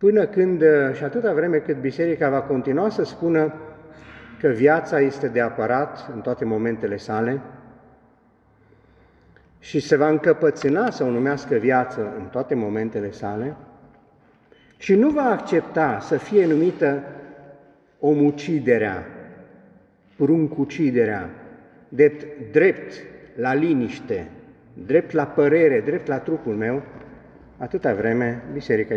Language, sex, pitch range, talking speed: Romanian, male, 120-155 Hz, 115 wpm